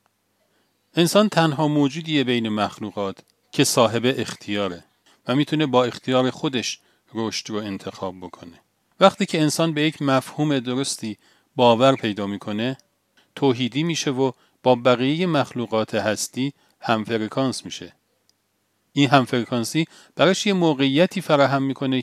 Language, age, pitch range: Persian, 40-59, 115-150 Hz